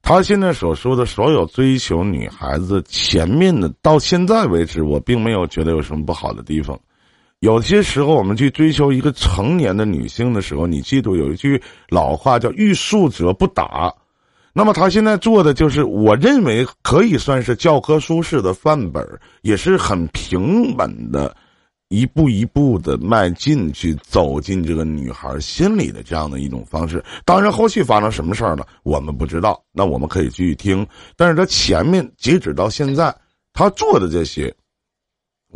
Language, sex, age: Chinese, male, 50-69